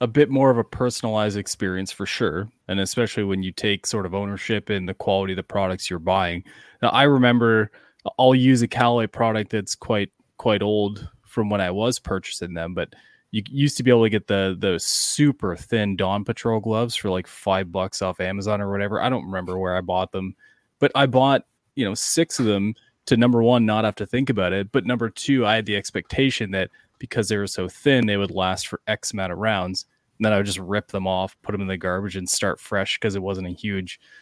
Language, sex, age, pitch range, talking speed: English, male, 20-39, 95-115 Hz, 230 wpm